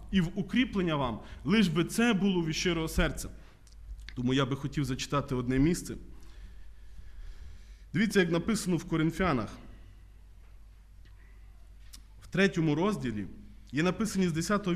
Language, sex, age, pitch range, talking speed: Ukrainian, male, 20-39, 150-225 Hz, 120 wpm